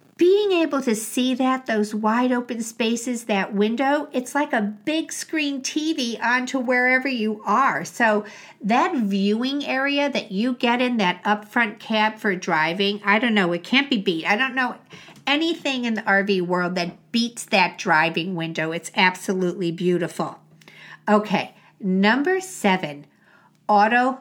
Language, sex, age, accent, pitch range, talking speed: English, female, 50-69, American, 185-260 Hz, 150 wpm